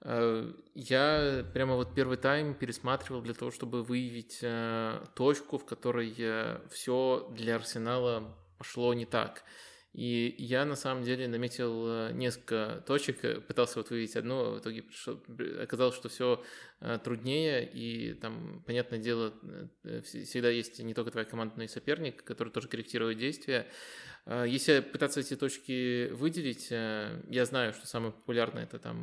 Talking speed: 135 wpm